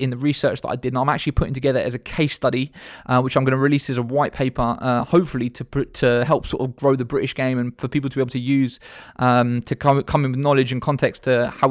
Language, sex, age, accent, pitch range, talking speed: English, male, 20-39, British, 125-155 Hz, 280 wpm